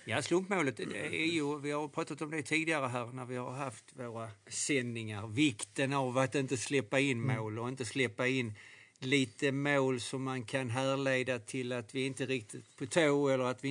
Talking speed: 195 wpm